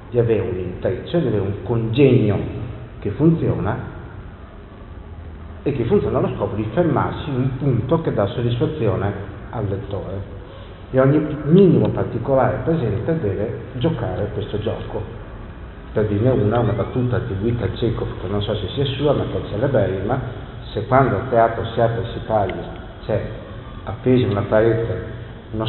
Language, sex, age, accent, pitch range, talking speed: Italian, male, 50-69, native, 100-120 Hz, 160 wpm